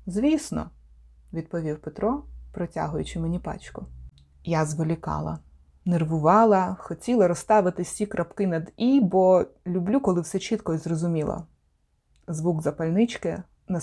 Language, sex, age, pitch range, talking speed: Ukrainian, female, 20-39, 155-190 Hz, 110 wpm